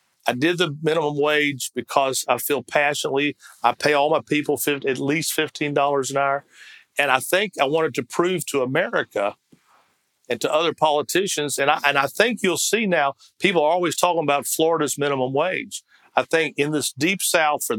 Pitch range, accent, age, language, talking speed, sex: 135-170 Hz, American, 50-69, English, 180 wpm, male